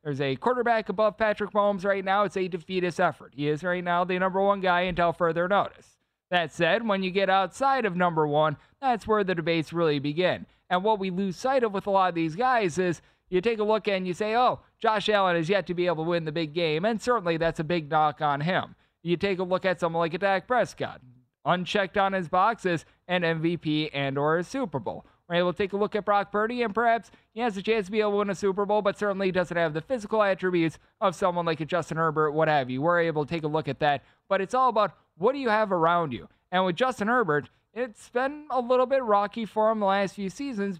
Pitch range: 165-210 Hz